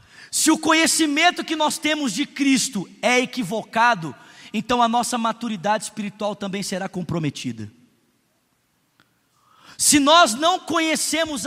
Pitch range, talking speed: 220-310 Hz, 115 wpm